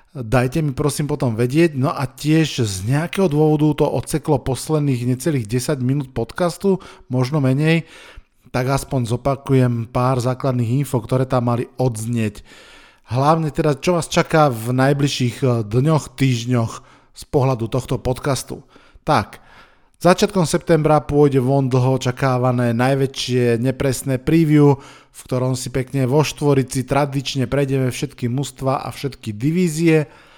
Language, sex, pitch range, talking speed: Slovak, male, 130-155 Hz, 130 wpm